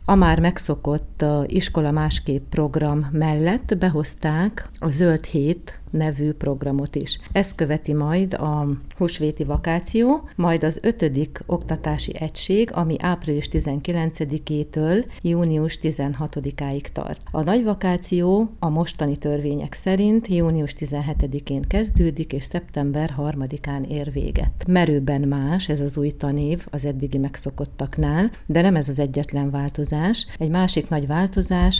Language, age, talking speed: Hungarian, 40-59, 125 wpm